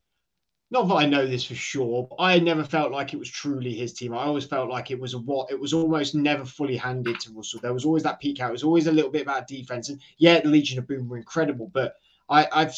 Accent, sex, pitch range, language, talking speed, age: British, male, 125-160 Hz, English, 270 wpm, 20-39